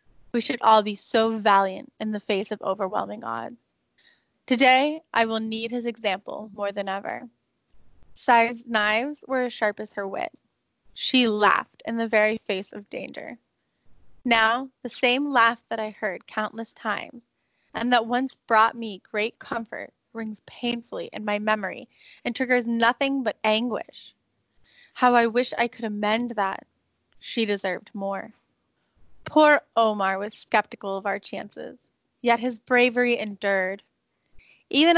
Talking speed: 145 wpm